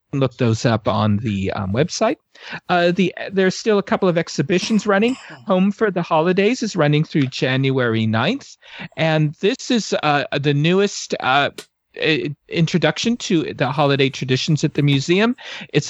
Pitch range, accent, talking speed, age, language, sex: 135-175 Hz, American, 145 wpm, 40-59, English, male